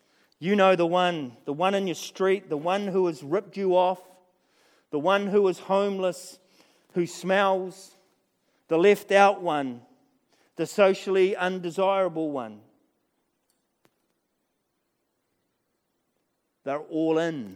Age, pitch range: 40-59, 135-180 Hz